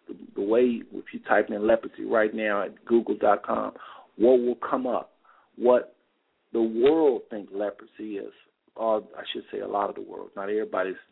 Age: 50-69